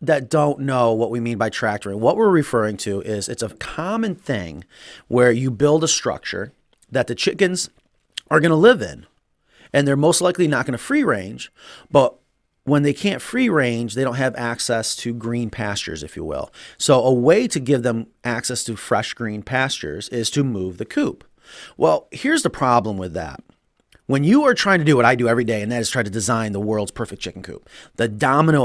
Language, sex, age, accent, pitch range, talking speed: English, male, 30-49, American, 115-155 Hz, 210 wpm